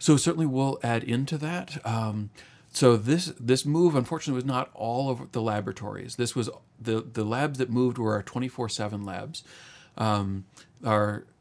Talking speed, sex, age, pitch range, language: 165 wpm, male, 40-59, 105-125 Hz, English